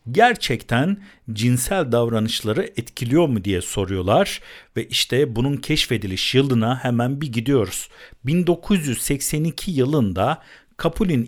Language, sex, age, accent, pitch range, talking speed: Turkish, male, 50-69, native, 110-165 Hz, 95 wpm